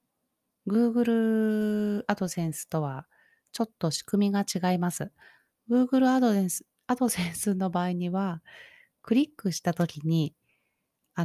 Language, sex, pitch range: Japanese, female, 165-220 Hz